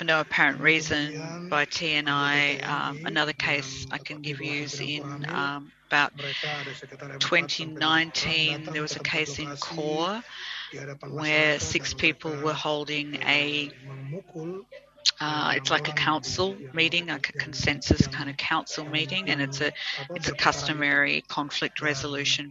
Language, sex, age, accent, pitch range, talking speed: English, female, 40-59, Australian, 145-155 Hz, 145 wpm